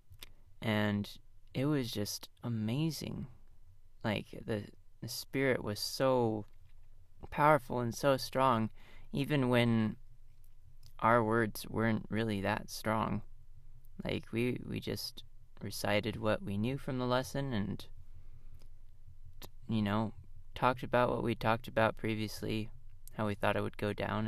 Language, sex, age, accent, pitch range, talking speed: English, male, 20-39, American, 100-120 Hz, 125 wpm